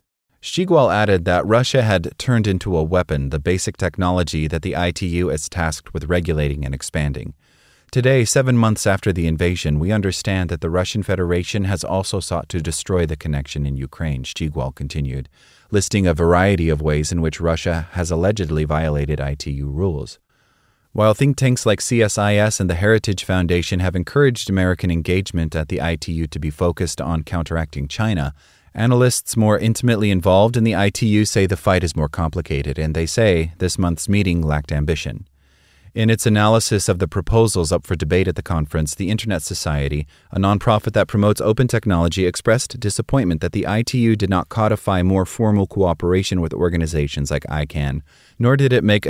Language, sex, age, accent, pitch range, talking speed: English, male, 30-49, American, 80-105 Hz, 170 wpm